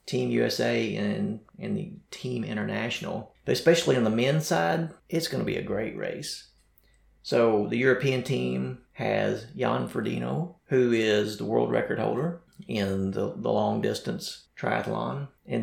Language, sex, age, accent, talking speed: English, male, 30-49, American, 155 wpm